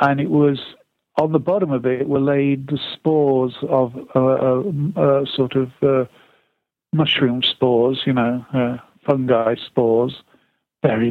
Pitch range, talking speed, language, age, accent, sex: 130-150 Hz, 145 wpm, English, 50-69, British, male